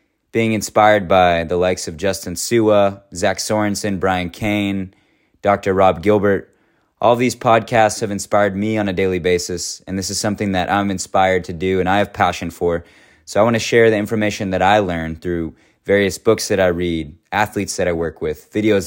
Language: English